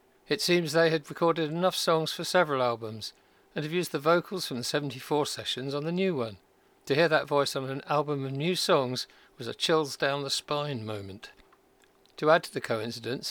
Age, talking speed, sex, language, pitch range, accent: 50-69, 205 wpm, male, English, 125-160 Hz, British